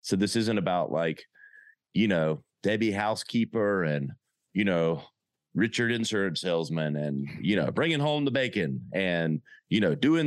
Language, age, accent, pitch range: English, 30-49, American, 90-130 Hz